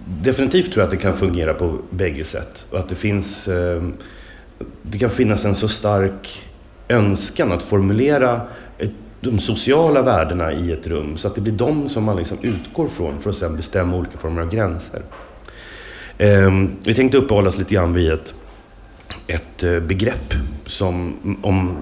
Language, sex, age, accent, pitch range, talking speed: English, male, 30-49, Swedish, 85-105 Hz, 155 wpm